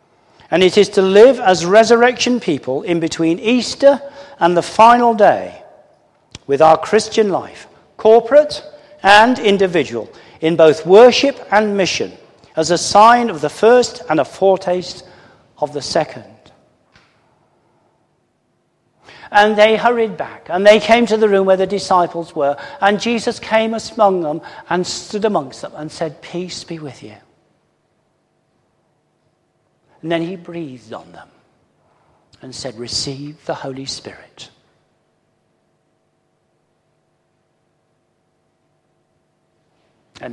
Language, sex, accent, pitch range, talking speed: English, male, British, 155-220 Hz, 120 wpm